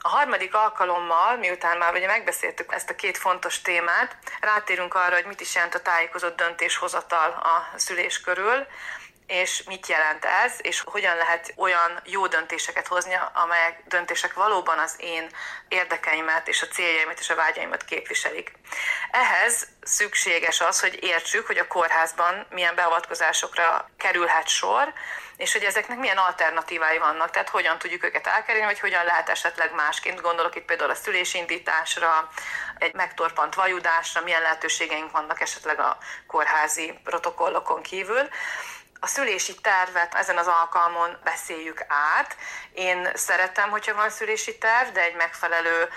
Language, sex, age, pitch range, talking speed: Hungarian, female, 30-49, 165-190 Hz, 140 wpm